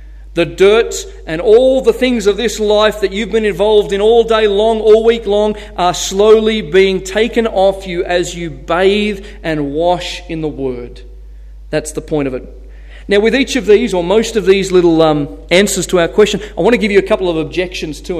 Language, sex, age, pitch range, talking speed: English, male, 40-59, 135-205 Hz, 210 wpm